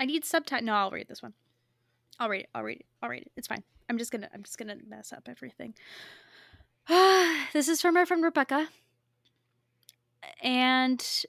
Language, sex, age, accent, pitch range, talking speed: English, female, 10-29, American, 210-280 Hz, 185 wpm